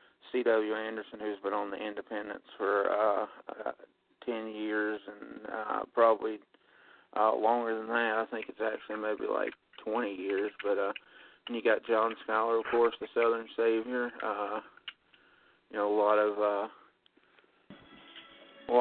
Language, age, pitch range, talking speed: English, 40-59, 105-110 Hz, 145 wpm